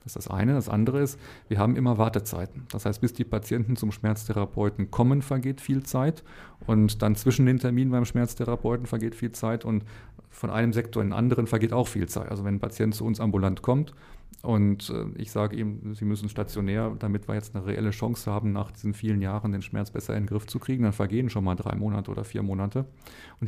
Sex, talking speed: male, 220 wpm